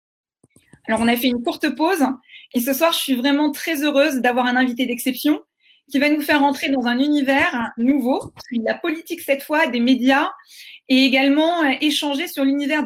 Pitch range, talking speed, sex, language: 255-300 Hz, 180 wpm, female, French